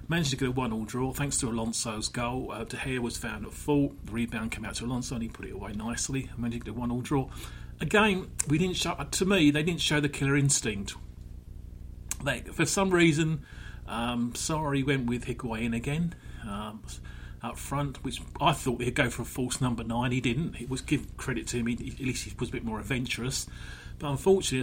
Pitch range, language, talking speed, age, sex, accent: 115-145 Hz, English, 215 wpm, 30-49, male, British